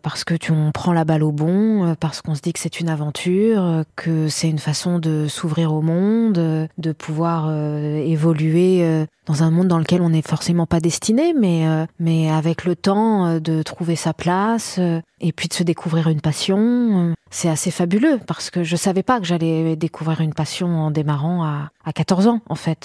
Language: French